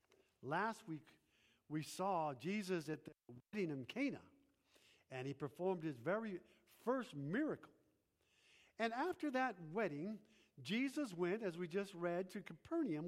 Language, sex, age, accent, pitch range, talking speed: English, male, 50-69, American, 175-255 Hz, 135 wpm